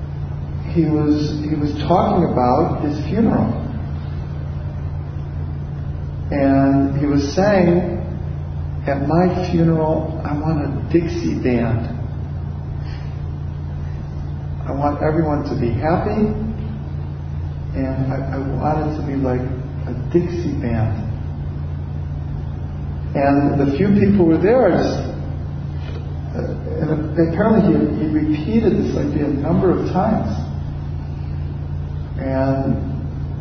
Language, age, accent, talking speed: English, 50-69, American, 100 wpm